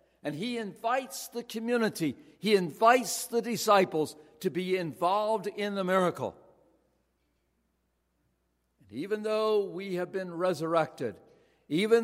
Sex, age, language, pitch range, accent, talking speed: male, 60-79, English, 135-185 Hz, American, 115 wpm